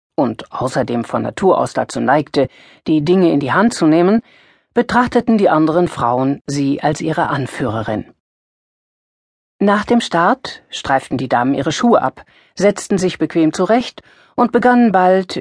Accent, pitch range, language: German, 135-190 Hz, German